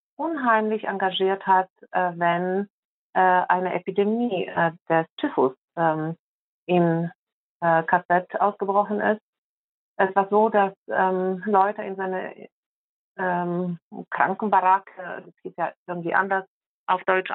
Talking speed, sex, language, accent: 95 wpm, female, German, German